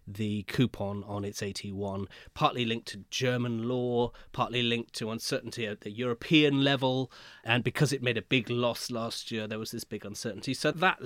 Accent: British